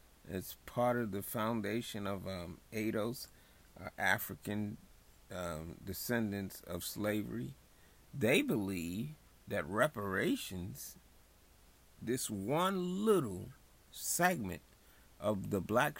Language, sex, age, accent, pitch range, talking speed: English, male, 30-49, American, 90-120 Hz, 95 wpm